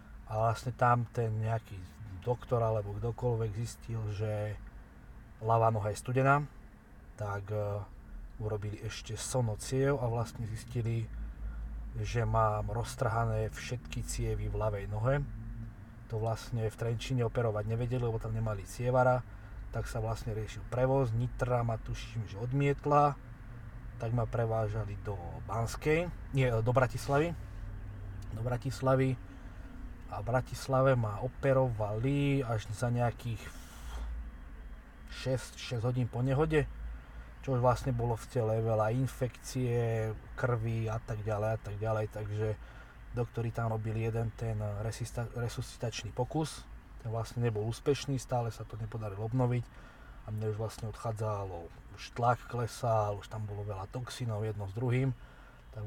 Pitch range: 105-125 Hz